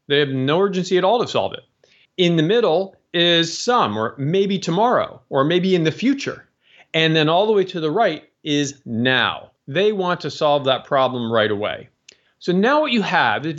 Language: English